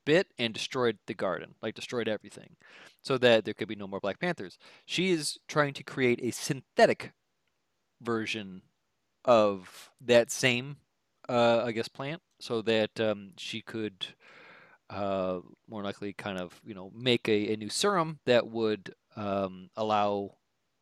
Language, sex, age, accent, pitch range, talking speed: English, male, 40-59, American, 105-135 Hz, 155 wpm